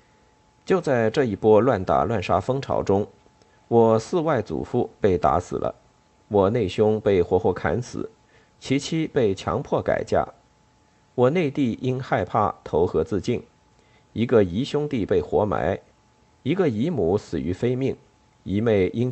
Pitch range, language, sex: 100-135 Hz, Chinese, male